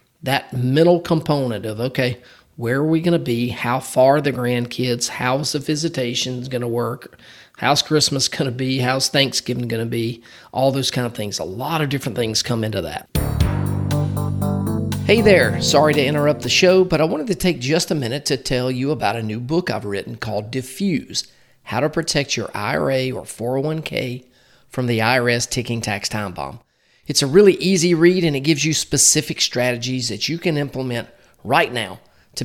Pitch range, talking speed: 120-155 Hz, 190 wpm